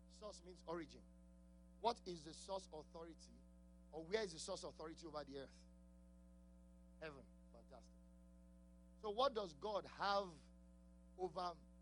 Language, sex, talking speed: English, male, 125 wpm